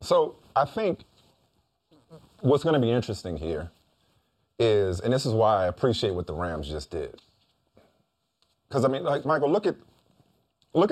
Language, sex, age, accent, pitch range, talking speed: English, male, 40-59, American, 110-155 Hz, 155 wpm